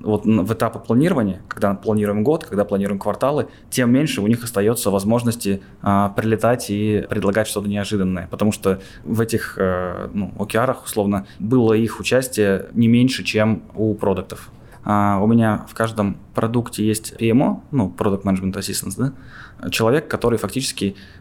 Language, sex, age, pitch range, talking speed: Russian, male, 20-39, 100-120 Hz, 145 wpm